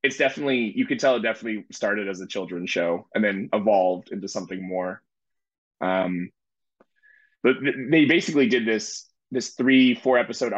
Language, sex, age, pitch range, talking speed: English, male, 20-39, 115-130 Hz, 160 wpm